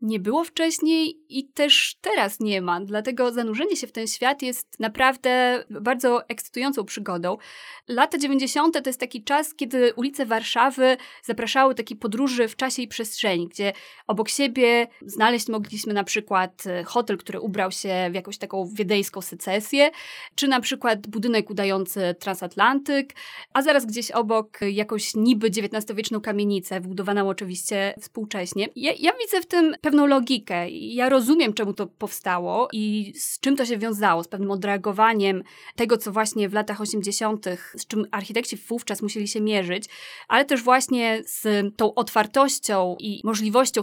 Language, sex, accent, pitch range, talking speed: Polish, female, native, 205-260 Hz, 150 wpm